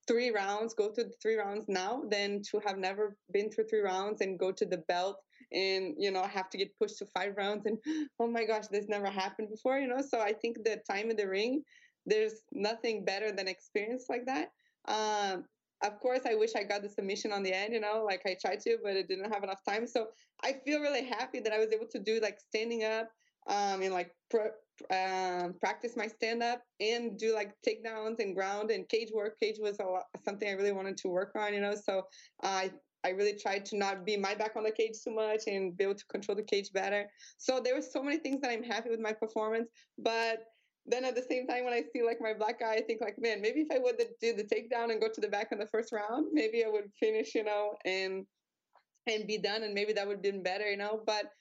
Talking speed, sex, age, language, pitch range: 250 wpm, female, 20-39, English, 200-230 Hz